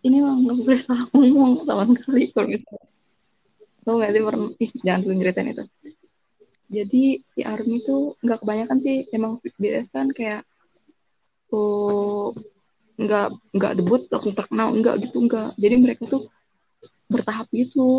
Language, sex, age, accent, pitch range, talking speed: Indonesian, female, 20-39, native, 205-255 Hz, 145 wpm